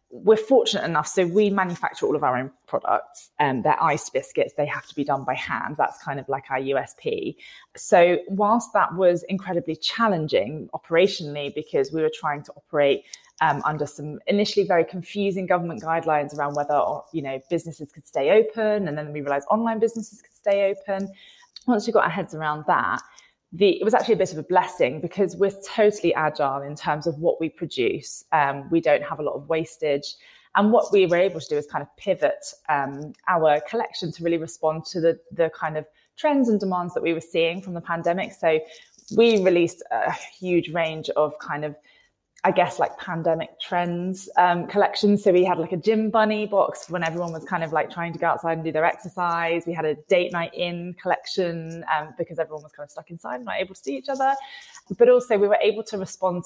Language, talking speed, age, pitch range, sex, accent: English, 210 wpm, 20-39, 155-200 Hz, female, British